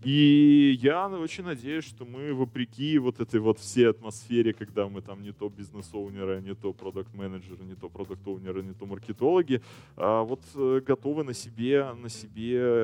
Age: 20-39